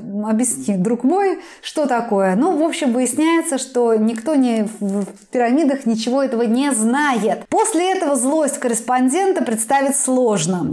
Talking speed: 135 wpm